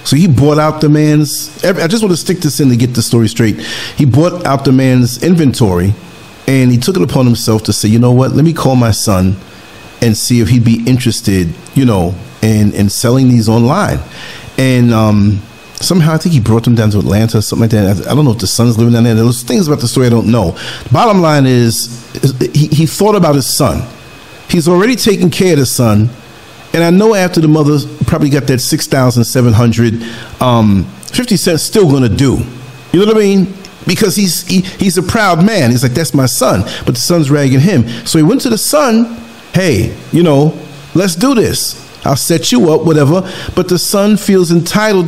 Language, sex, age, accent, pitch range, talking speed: English, male, 40-59, American, 120-185 Hz, 215 wpm